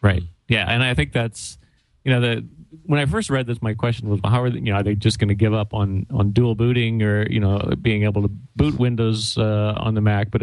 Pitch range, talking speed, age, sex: 105-120 Hz, 270 wpm, 30-49, male